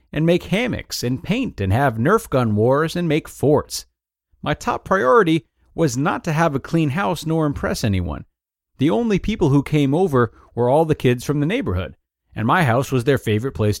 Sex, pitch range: male, 105-160 Hz